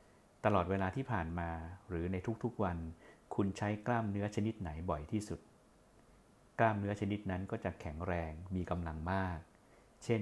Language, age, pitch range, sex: Thai, 60-79, 85-110 Hz, male